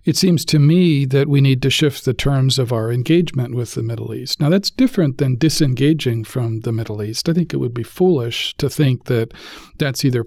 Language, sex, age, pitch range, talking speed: English, male, 50-69, 120-140 Hz, 220 wpm